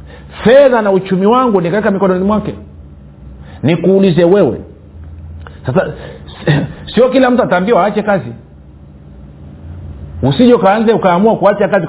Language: Swahili